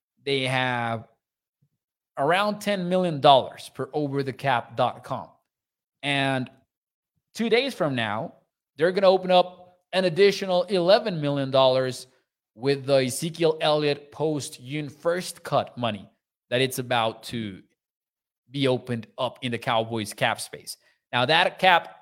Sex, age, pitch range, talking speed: male, 20-39, 130-185 Hz, 120 wpm